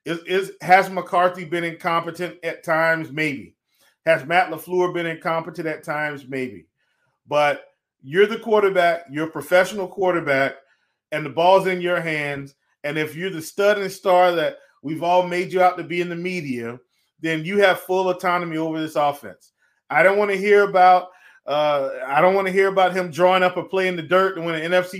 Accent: American